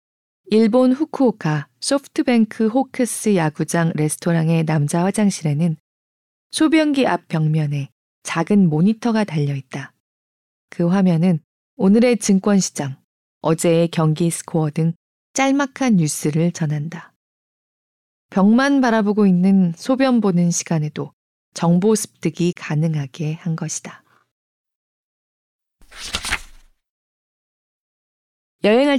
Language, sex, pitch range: Korean, female, 160-220 Hz